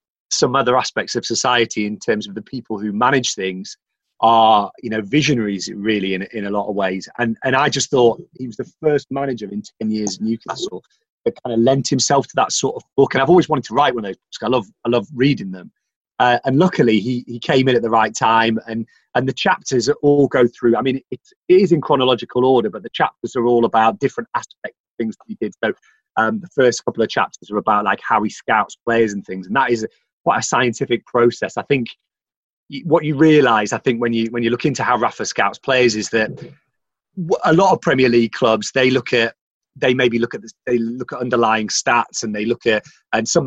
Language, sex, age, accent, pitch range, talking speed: English, male, 30-49, British, 110-130 Hz, 235 wpm